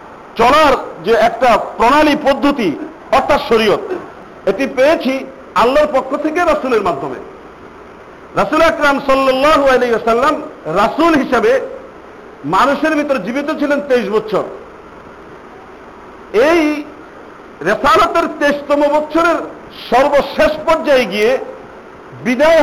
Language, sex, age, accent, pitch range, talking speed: Bengali, male, 50-69, native, 250-315 Hz, 90 wpm